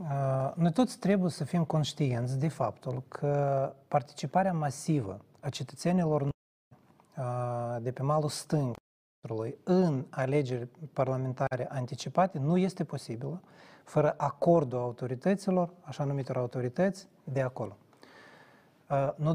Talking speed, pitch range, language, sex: 100 wpm, 130-175 Hz, Romanian, male